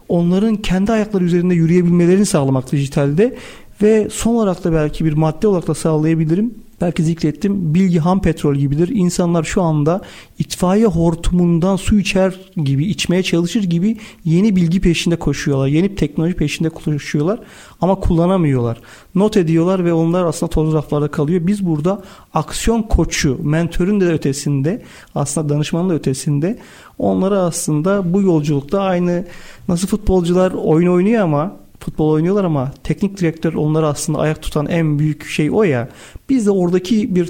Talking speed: 145 wpm